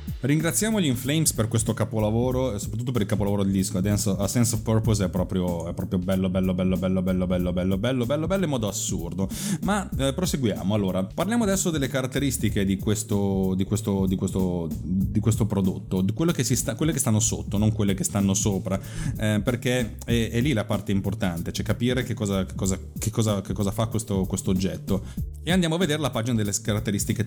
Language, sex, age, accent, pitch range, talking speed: Italian, male, 30-49, native, 95-130 Hz, 215 wpm